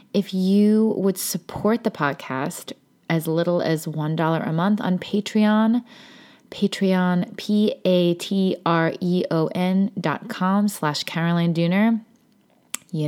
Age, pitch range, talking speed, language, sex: 20-39, 160-200 Hz, 95 wpm, English, female